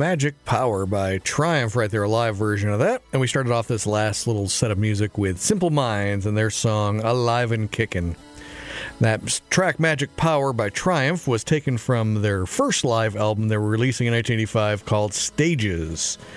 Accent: American